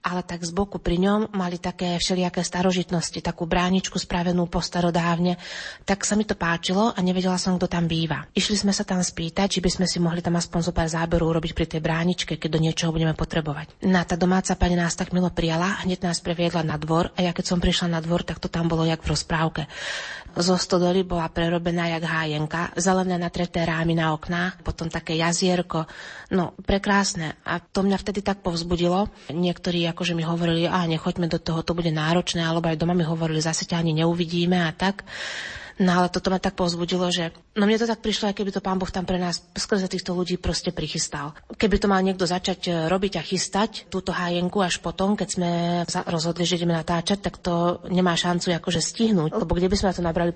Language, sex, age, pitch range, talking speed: Slovak, female, 30-49, 170-185 Hz, 210 wpm